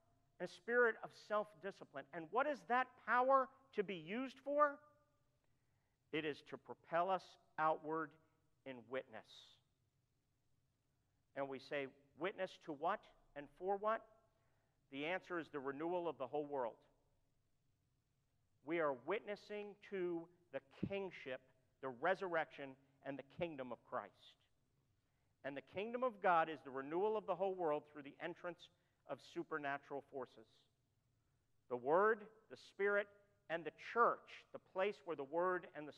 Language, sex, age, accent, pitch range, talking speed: English, male, 50-69, American, 130-195 Hz, 140 wpm